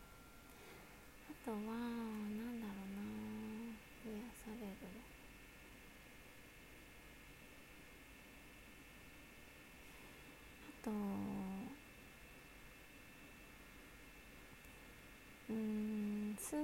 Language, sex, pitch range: Japanese, female, 200-250 Hz